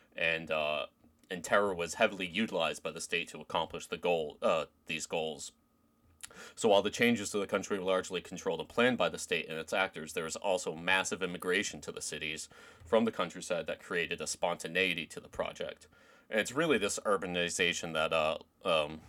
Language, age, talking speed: English, 30-49, 190 wpm